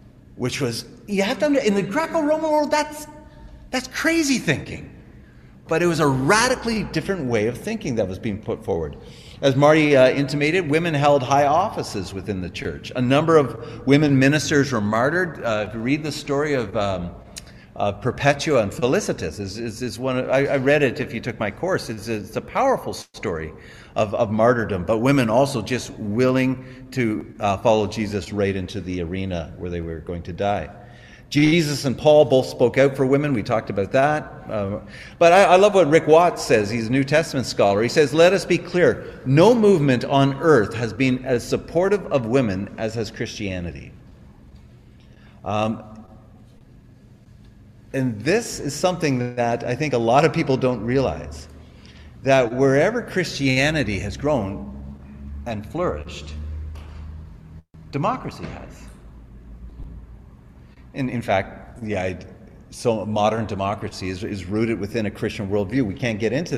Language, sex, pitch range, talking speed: English, male, 105-145 Hz, 170 wpm